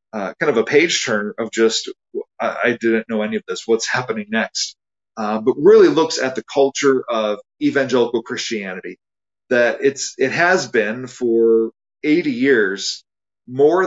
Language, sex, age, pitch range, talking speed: English, male, 40-59, 115-140 Hz, 160 wpm